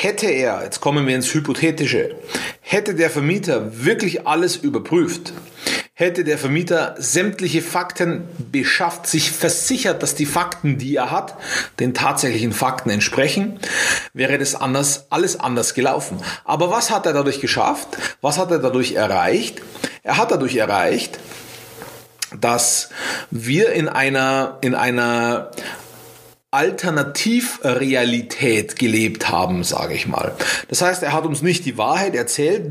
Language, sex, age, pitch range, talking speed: German, male, 40-59, 135-180 Hz, 135 wpm